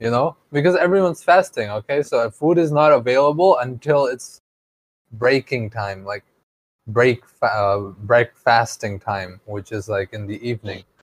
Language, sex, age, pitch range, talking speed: English, male, 20-39, 100-130 Hz, 140 wpm